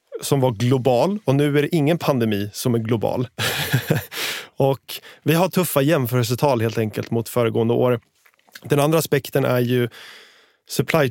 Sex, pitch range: male, 120-145 Hz